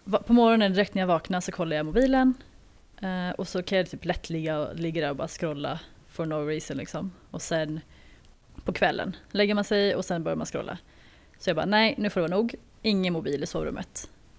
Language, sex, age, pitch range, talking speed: Swedish, female, 20-39, 160-200 Hz, 210 wpm